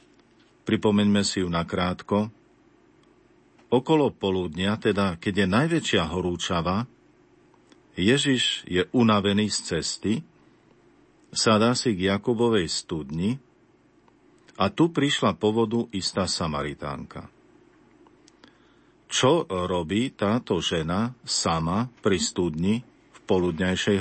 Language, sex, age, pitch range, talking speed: Slovak, male, 50-69, 95-125 Hz, 90 wpm